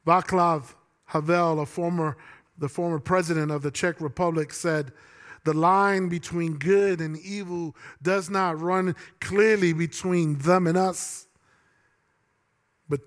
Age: 40-59